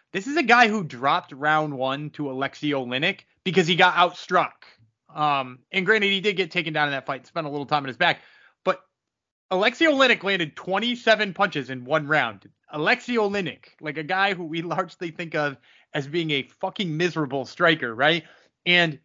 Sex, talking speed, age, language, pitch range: male, 190 wpm, 20-39, English, 150-215 Hz